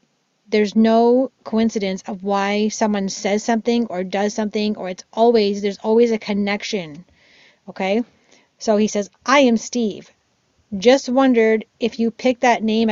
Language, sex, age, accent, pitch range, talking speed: English, female, 30-49, American, 205-240 Hz, 150 wpm